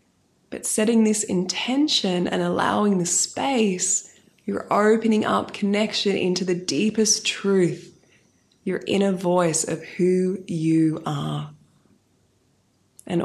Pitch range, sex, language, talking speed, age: 175-210 Hz, female, English, 110 wpm, 20-39